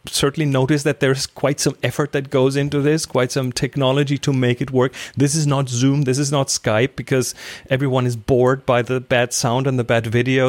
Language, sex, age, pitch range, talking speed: English, male, 30-49, 115-150 Hz, 215 wpm